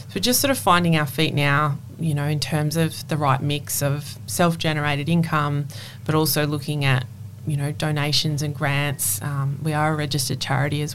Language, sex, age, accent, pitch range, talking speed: English, female, 20-39, Australian, 140-160 Hz, 190 wpm